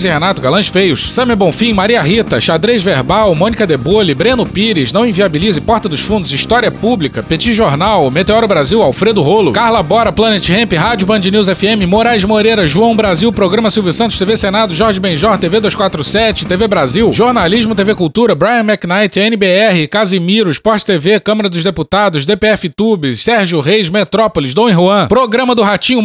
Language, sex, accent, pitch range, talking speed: Portuguese, male, Brazilian, 180-220 Hz, 165 wpm